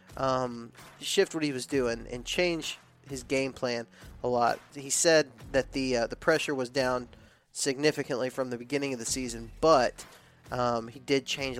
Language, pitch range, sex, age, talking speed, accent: English, 125-150 Hz, male, 20-39, 175 wpm, American